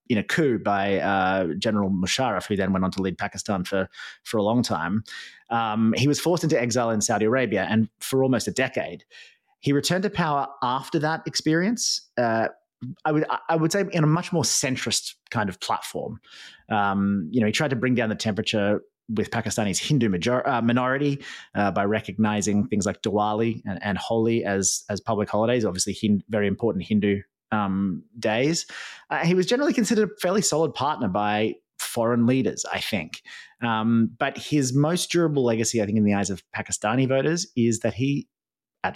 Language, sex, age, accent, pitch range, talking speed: English, male, 30-49, Australian, 105-135 Hz, 190 wpm